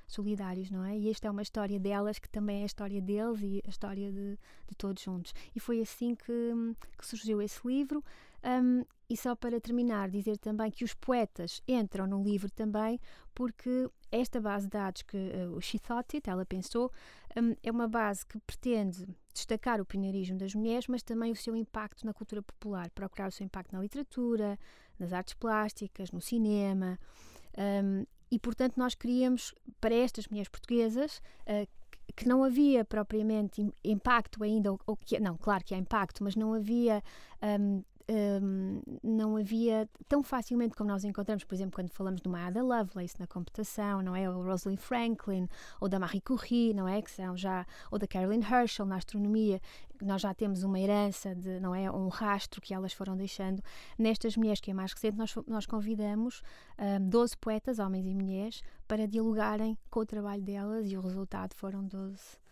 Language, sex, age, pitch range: Portuguese, female, 20-39, 195-230 Hz